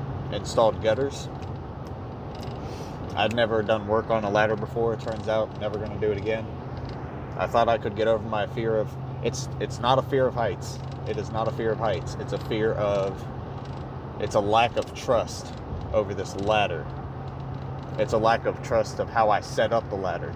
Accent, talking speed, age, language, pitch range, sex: American, 190 wpm, 30-49, English, 110-130 Hz, male